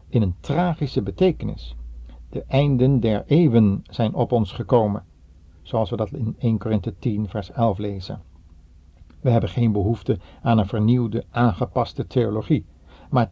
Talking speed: 145 wpm